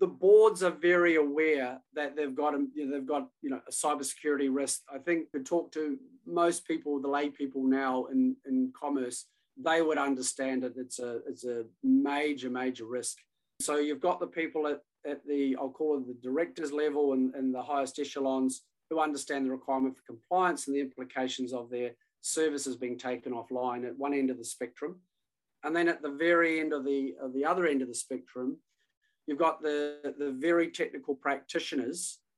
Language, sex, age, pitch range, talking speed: English, male, 30-49, 135-165 Hz, 195 wpm